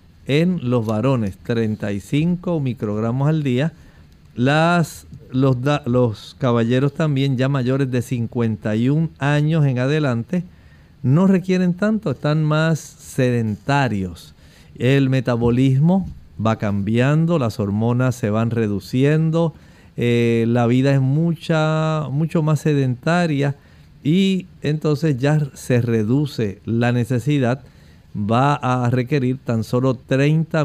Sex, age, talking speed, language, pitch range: male, 50-69, 105 wpm, Spanish, 115-145 Hz